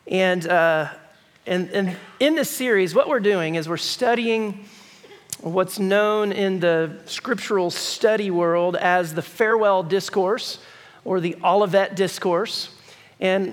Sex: male